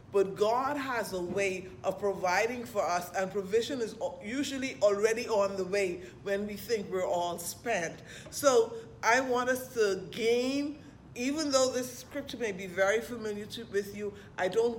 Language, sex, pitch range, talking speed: English, female, 185-240 Hz, 170 wpm